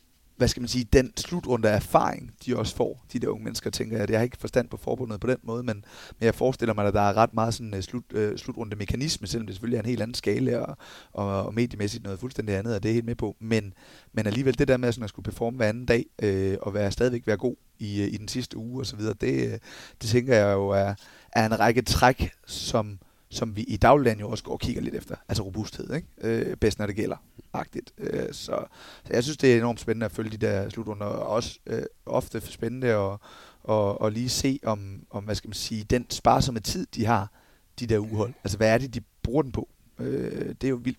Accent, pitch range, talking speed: native, 105-120 Hz, 235 wpm